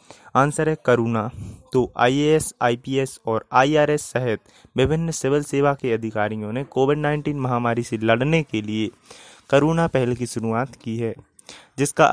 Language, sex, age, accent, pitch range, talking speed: Hindi, male, 20-39, native, 115-150 Hz, 145 wpm